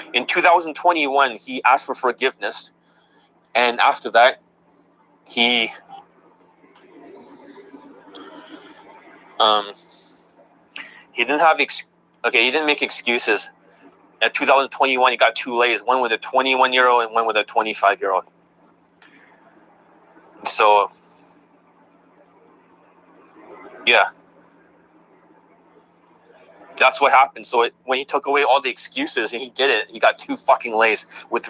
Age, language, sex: 20-39, English, male